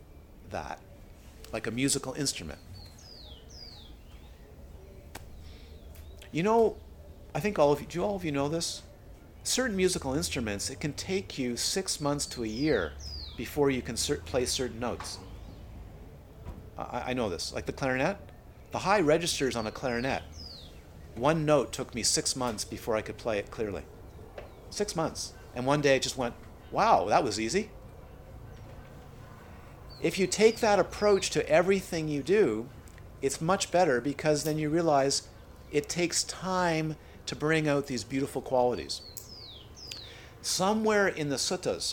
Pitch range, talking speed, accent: 95-150 Hz, 145 wpm, American